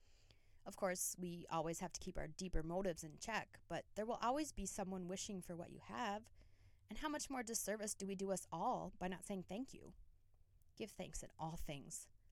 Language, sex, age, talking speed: English, female, 20-39, 210 wpm